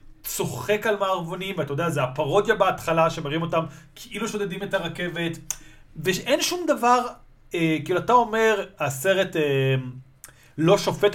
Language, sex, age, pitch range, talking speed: Hebrew, male, 40-59, 160-220 Hz, 135 wpm